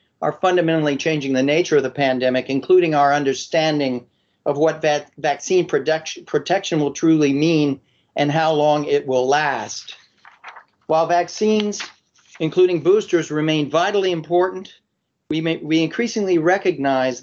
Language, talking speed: English, 120 wpm